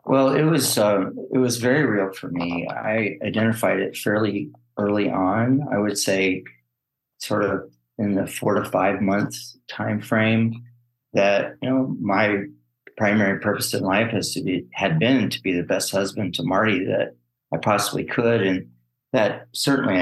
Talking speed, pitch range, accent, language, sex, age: 170 wpm, 95-125 Hz, American, English, male, 40-59